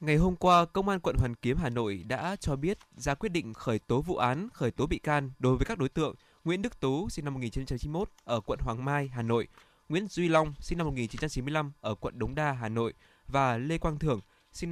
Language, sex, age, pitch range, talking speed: Vietnamese, male, 20-39, 120-155 Hz, 235 wpm